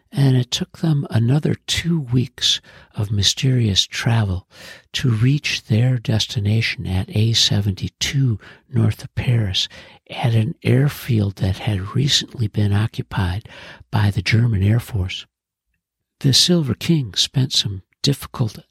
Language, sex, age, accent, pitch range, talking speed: English, male, 60-79, American, 105-130 Hz, 120 wpm